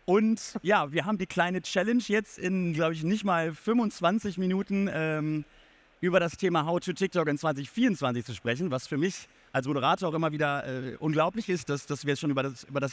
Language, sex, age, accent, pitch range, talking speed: German, male, 30-49, German, 145-180 Hz, 210 wpm